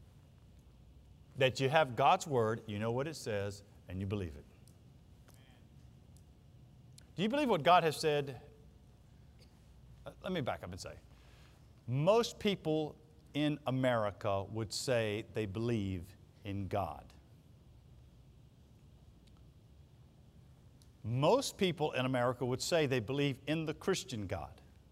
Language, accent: English, American